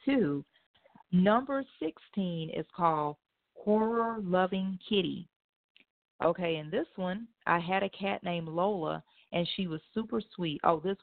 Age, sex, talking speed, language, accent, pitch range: 40-59, female, 135 wpm, English, American, 165-200 Hz